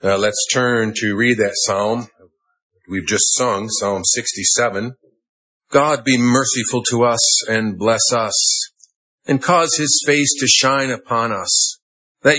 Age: 50-69